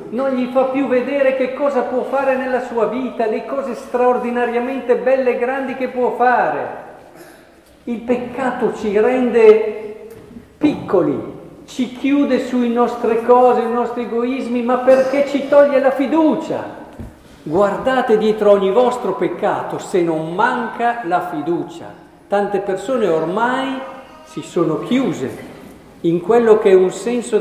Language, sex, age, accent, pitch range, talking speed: Italian, male, 50-69, native, 170-250 Hz, 135 wpm